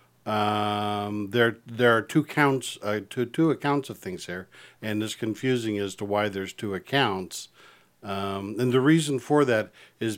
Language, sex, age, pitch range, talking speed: English, male, 50-69, 95-115 Hz, 170 wpm